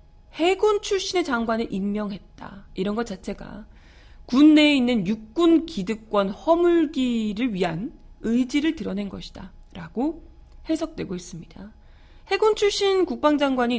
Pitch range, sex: 185-275 Hz, female